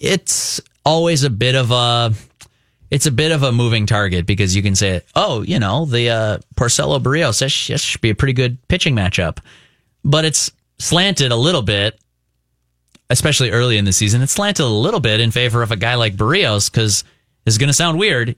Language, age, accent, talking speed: English, 30-49, American, 205 wpm